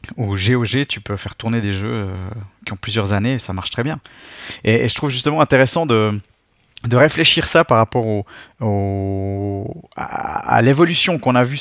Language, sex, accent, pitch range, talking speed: French, male, French, 110-140 Hz, 190 wpm